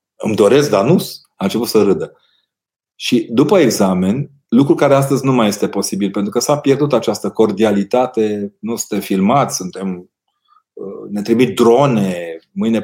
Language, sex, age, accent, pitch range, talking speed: Romanian, male, 30-49, native, 95-120 Hz, 150 wpm